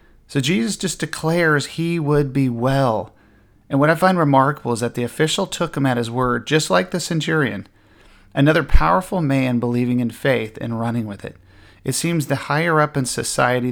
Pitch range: 115-145 Hz